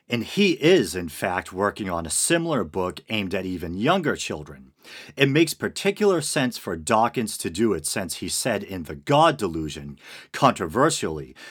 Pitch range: 95-160 Hz